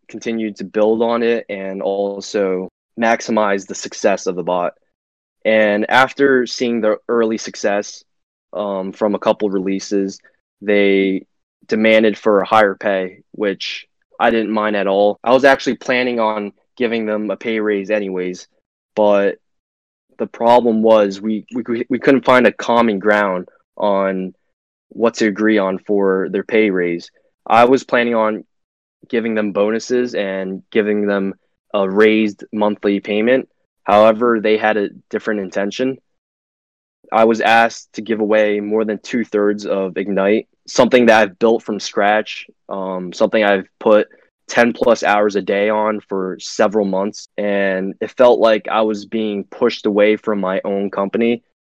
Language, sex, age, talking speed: English, male, 20-39, 150 wpm